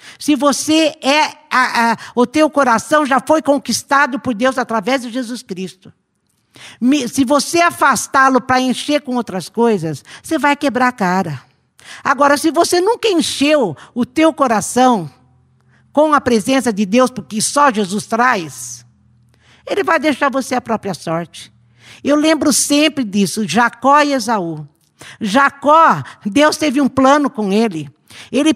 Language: Portuguese